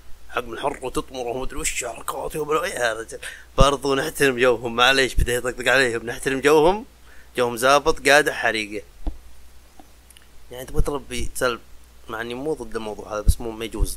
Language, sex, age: Arabic, male, 30-49